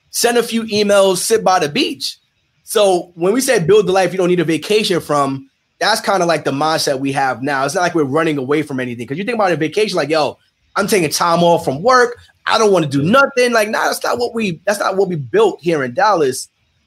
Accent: American